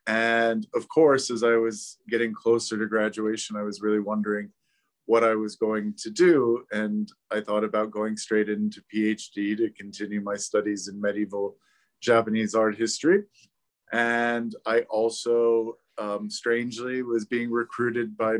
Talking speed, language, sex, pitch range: 150 wpm, English, male, 105-120 Hz